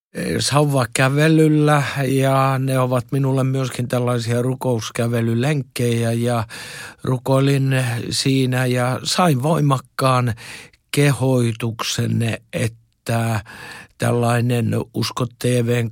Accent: native